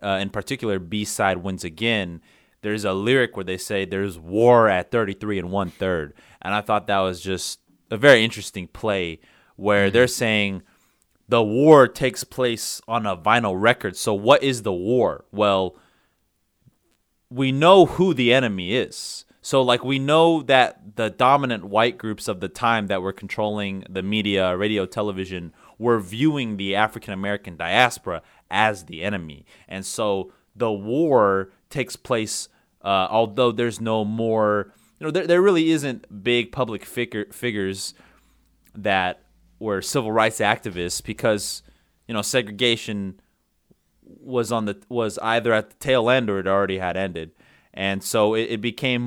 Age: 30-49